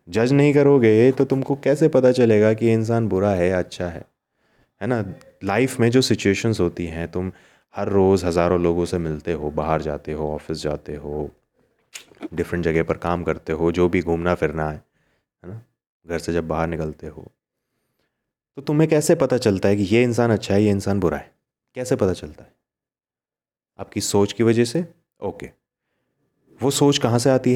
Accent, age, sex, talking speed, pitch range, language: native, 30-49, male, 185 wpm, 85-120 Hz, Hindi